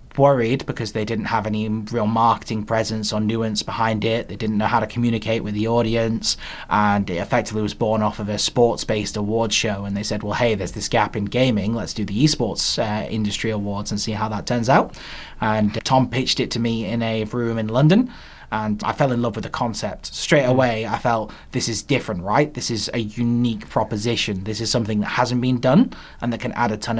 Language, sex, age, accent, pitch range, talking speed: English, male, 20-39, British, 105-120 Hz, 225 wpm